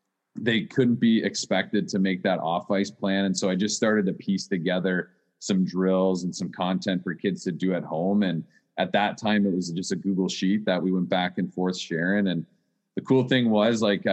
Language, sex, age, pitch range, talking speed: English, male, 30-49, 90-100 Hz, 220 wpm